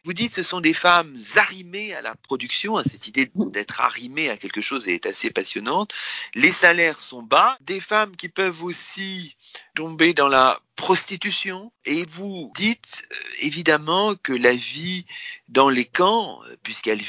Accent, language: French, French